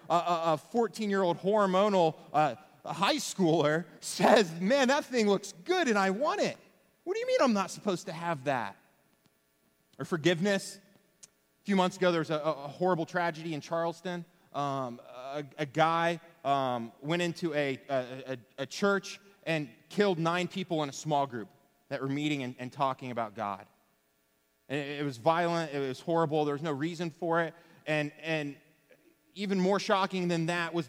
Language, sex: English, male